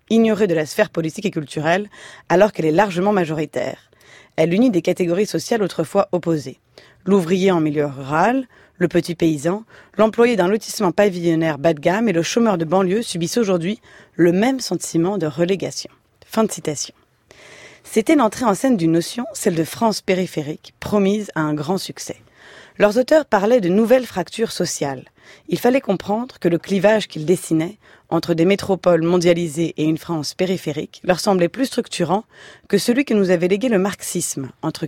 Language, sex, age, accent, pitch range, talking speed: French, female, 30-49, French, 165-215 Hz, 170 wpm